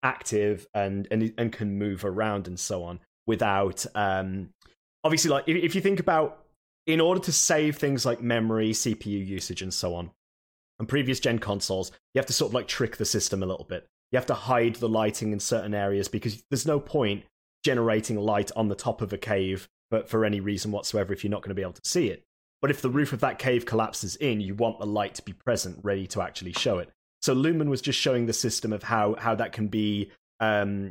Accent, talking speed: British, 225 wpm